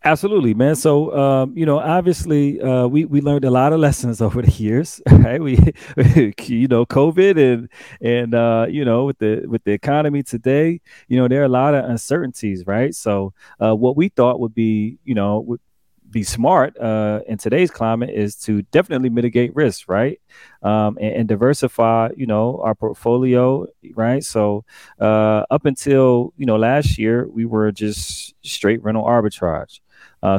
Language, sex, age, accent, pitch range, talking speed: English, male, 30-49, American, 105-130 Hz, 175 wpm